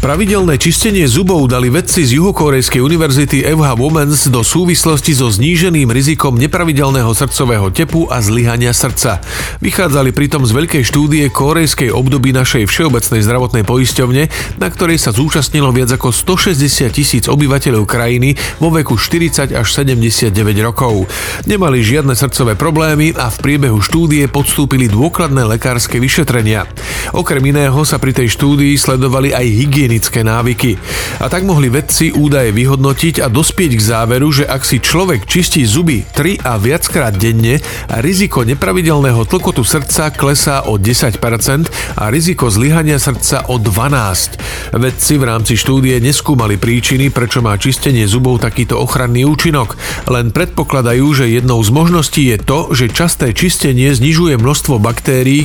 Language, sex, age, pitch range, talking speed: Slovak, male, 40-59, 120-150 Hz, 140 wpm